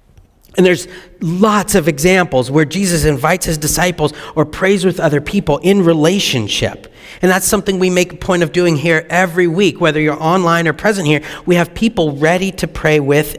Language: English